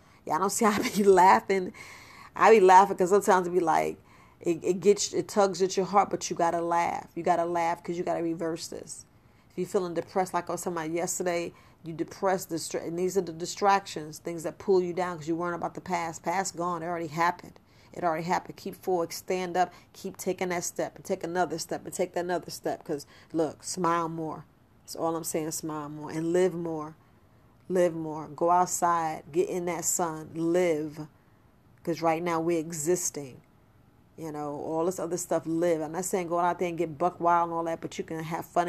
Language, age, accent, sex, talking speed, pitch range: English, 40-59, American, female, 220 wpm, 160-185 Hz